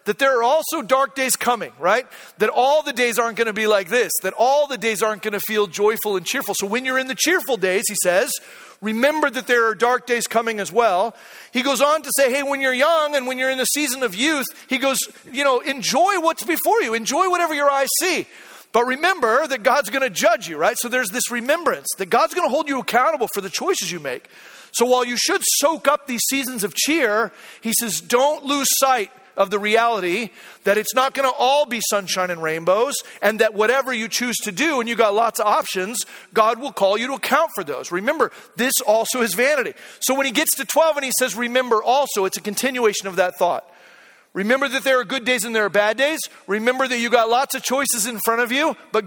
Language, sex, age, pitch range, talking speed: English, male, 40-59, 220-275 Hz, 235 wpm